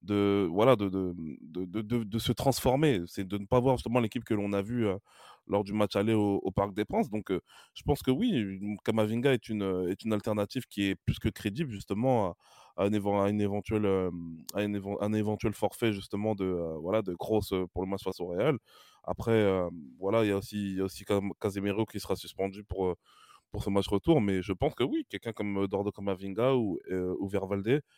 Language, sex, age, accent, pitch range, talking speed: French, male, 20-39, French, 95-115 Hz, 210 wpm